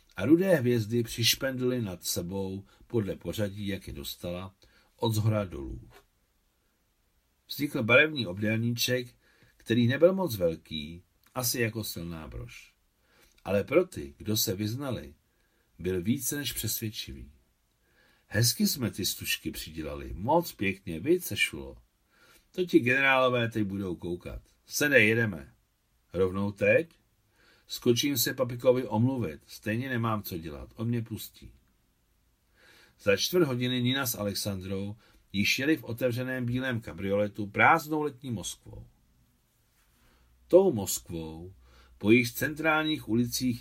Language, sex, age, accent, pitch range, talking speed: Czech, male, 60-79, native, 95-125 Hz, 120 wpm